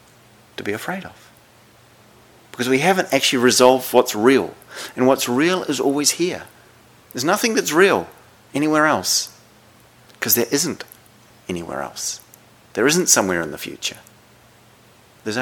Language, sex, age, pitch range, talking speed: English, male, 40-59, 110-140 Hz, 135 wpm